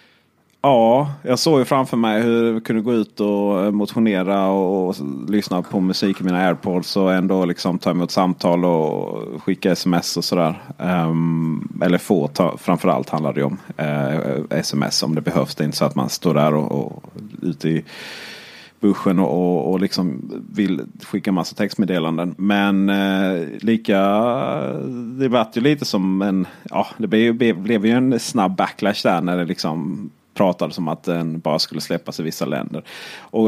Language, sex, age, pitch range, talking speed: Swedish, male, 30-49, 85-105 Hz, 175 wpm